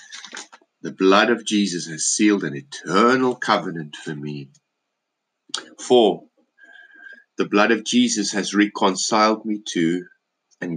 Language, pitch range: English, 90-120 Hz